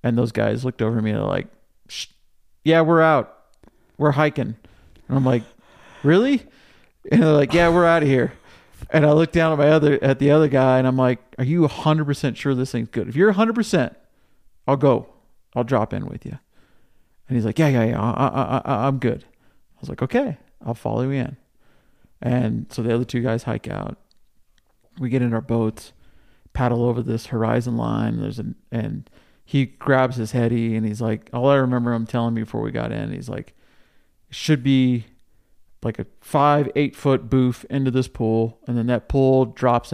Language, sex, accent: English, male, American